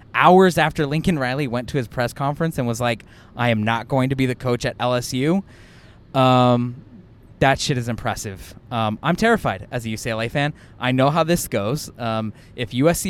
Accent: American